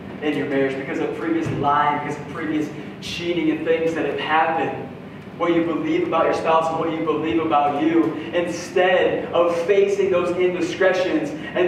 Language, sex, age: English, male, 20-39